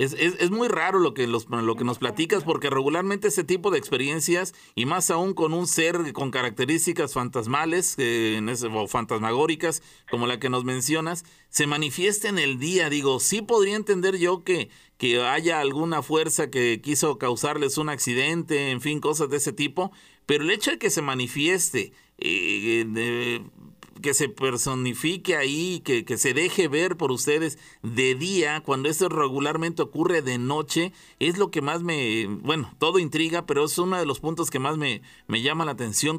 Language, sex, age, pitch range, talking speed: Spanish, male, 40-59, 125-175 Hz, 175 wpm